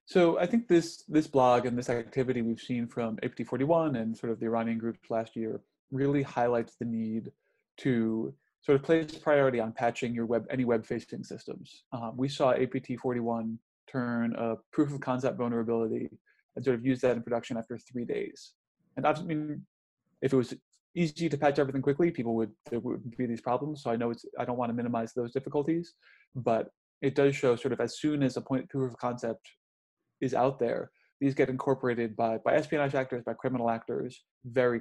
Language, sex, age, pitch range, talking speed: English, male, 30-49, 115-140 Hz, 190 wpm